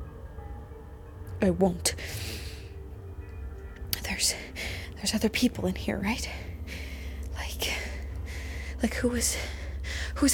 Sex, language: female, English